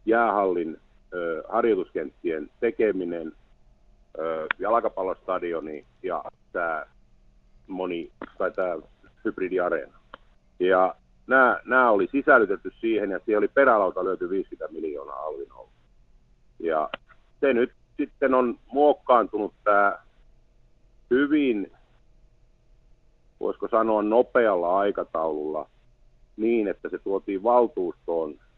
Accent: native